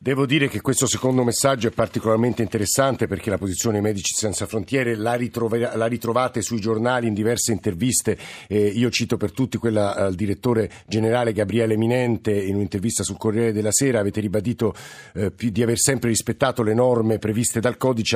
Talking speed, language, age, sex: 175 wpm, Italian, 50-69, male